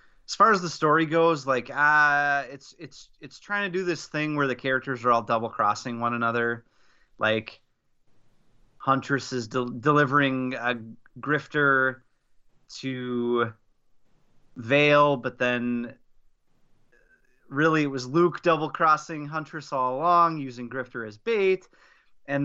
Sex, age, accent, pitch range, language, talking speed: male, 30-49, American, 120-155 Hz, English, 135 wpm